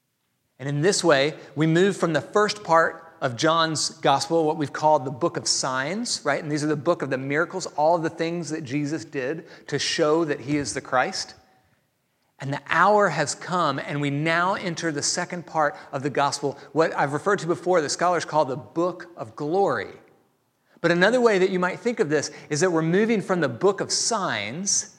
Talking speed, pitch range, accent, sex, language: 210 wpm, 140-175 Hz, American, male, English